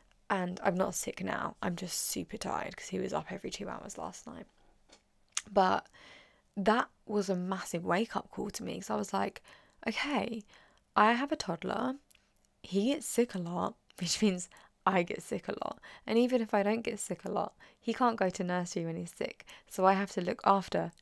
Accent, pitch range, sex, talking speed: British, 175-210 Hz, female, 205 wpm